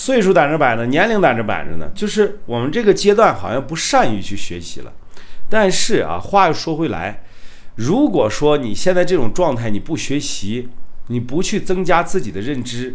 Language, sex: Chinese, male